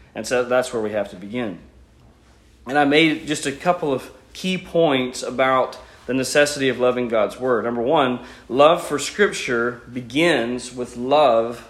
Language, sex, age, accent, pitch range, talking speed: English, male, 40-59, American, 125-155 Hz, 165 wpm